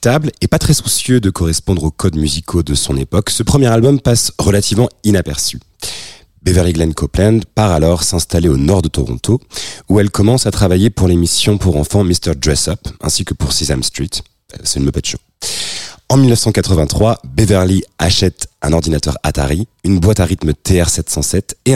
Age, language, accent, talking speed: 30-49, French, French, 170 wpm